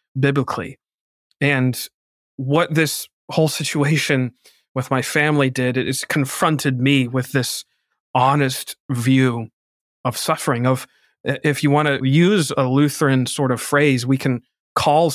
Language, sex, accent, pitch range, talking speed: English, male, American, 130-145 Hz, 130 wpm